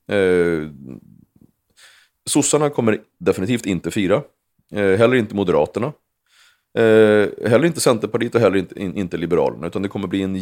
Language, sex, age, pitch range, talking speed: English, male, 30-49, 95-125 Hz, 115 wpm